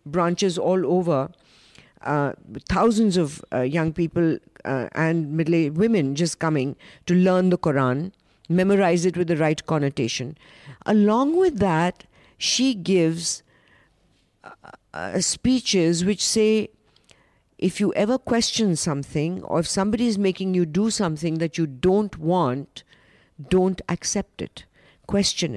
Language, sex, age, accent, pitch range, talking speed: English, female, 50-69, Indian, 160-200 Hz, 130 wpm